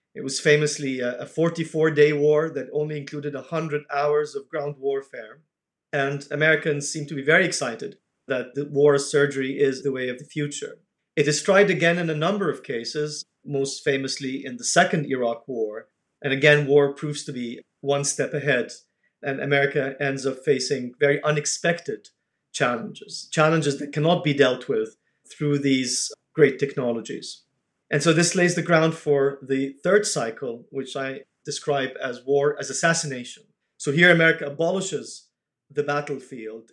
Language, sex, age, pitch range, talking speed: English, male, 40-59, 135-160 Hz, 160 wpm